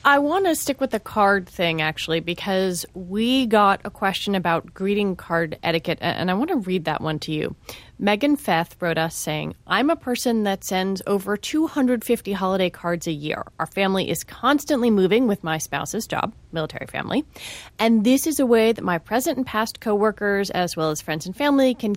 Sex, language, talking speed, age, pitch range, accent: female, English, 195 wpm, 30-49, 180-245 Hz, American